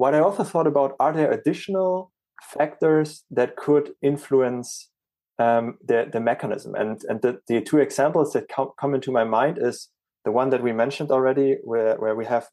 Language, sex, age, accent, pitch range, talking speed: English, male, 30-49, German, 120-155 Hz, 180 wpm